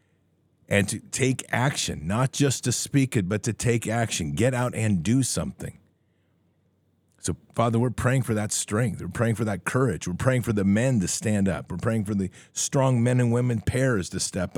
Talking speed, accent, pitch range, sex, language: 200 wpm, American, 95-125 Hz, male, English